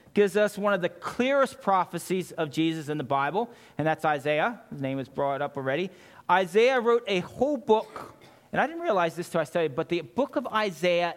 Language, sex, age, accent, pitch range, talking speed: English, male, 40-59, American, 135-180 Hz, 210 wpm